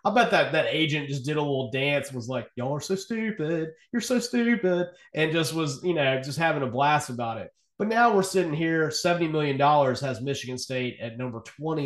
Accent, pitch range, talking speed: American, 125-150 Hz, 225 wpm